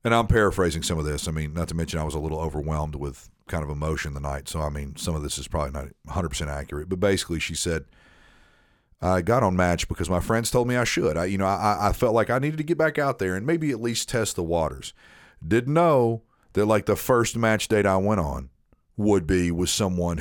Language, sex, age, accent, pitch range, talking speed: English, male, 40-59, American, 80-105 Hz, 250 wpm